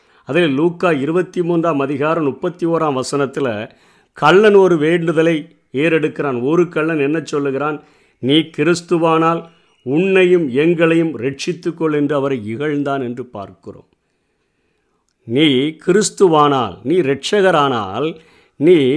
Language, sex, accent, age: Tamil, male, native, 50-69